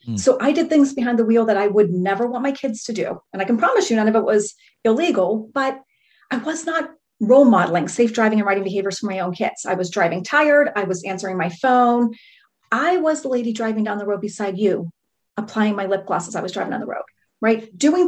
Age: 40-59